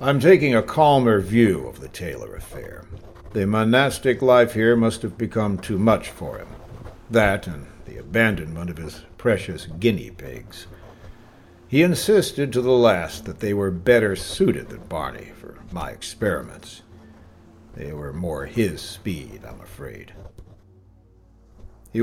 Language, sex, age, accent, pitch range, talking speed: English, male, 60-79, American, 90-120 Hz, 140 wpm